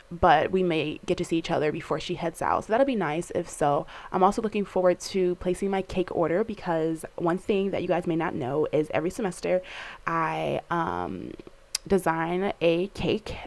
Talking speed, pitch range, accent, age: 195 wpm, 165-210 Hz, American, 20-39